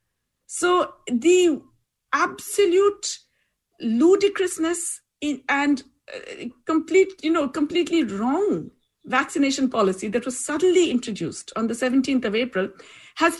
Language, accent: English, Indian